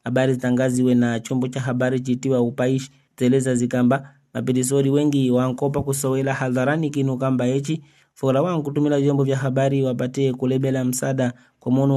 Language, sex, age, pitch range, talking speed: English, male, 30-49, 125-135 Hz, 135 wpm